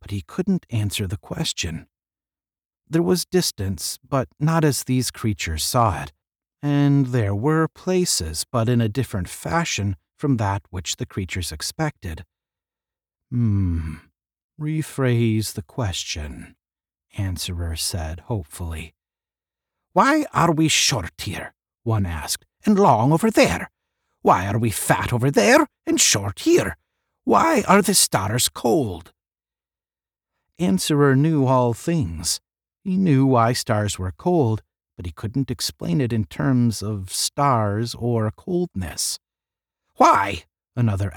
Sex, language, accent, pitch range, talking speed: male, English, American, 90-145 Hz, 125 wpm